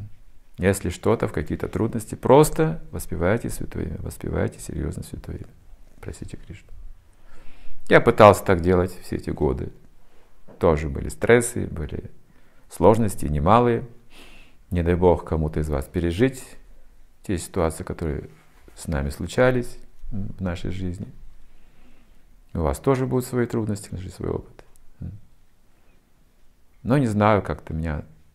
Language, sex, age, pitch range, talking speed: Russian, male, 40-59, 75-100 Hz, 120 wpm